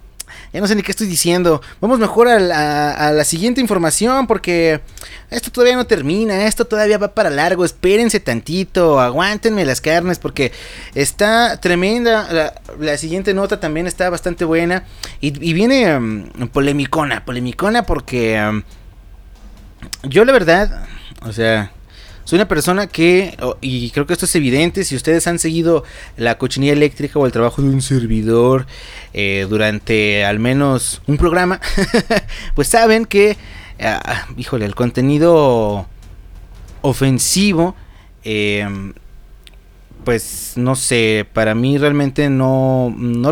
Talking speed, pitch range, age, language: 140 wpm, 115-180 Hz, 30-49, Spanish